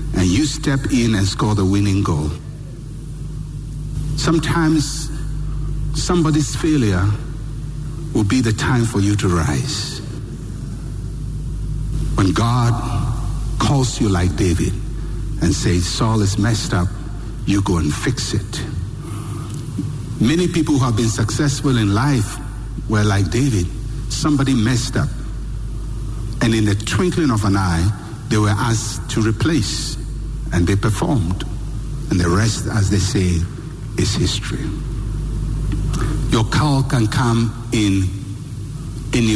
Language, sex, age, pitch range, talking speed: English, male, 60-79, 105-145 Hz, 120 wpm